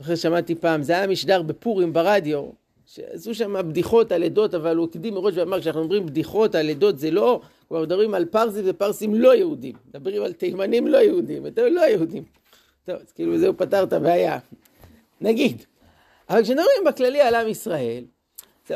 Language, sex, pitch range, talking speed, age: Hebrew, male, 170-245 Hz, 175 wpm, 50-69